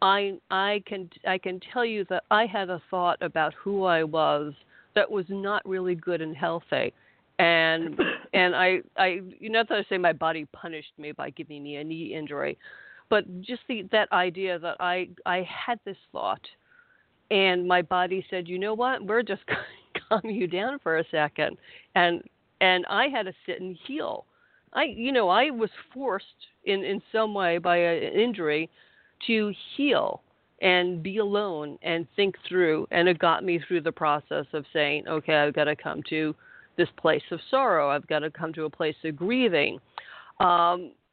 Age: 50-69